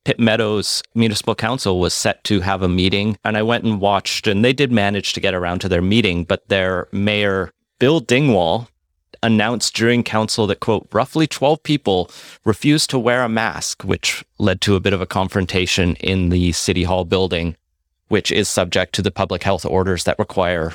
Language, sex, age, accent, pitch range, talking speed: English, male, 30-49, American, 90-110 Hz, 190 wpm